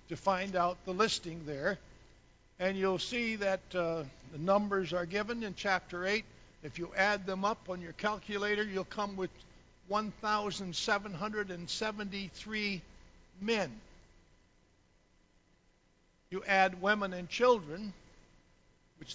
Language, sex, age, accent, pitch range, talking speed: English, male, 60-79, American, 170-215 Hz, 115 wpm